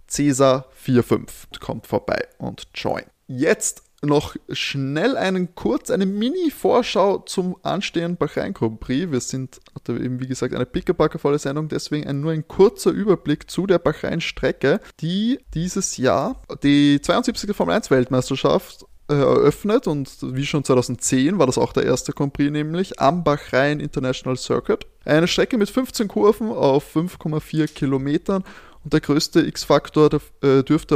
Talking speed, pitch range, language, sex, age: 135 wpm, 135-165 Hz, German, male, 20-39